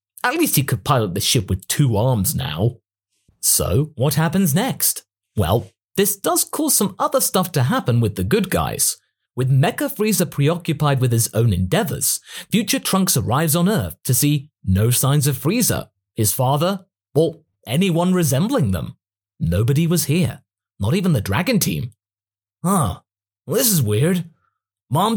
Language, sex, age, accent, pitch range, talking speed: English, male, 30-49, British, 115-180 Hz, 155 wpm